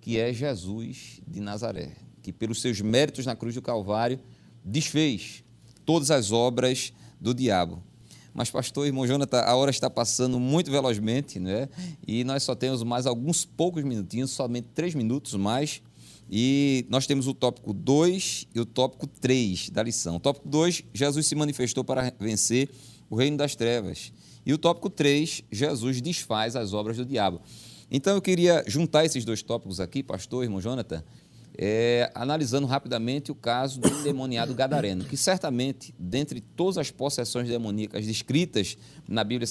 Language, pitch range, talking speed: Portuguese, 110-140 Hz, 160 wpm